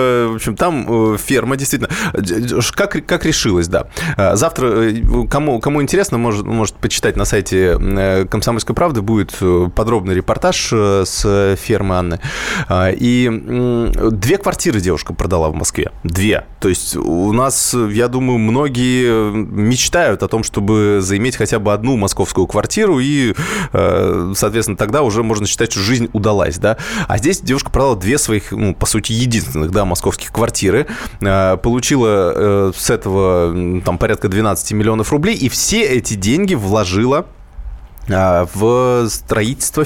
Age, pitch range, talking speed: 20-39, 100-120 Hz, 135 wpm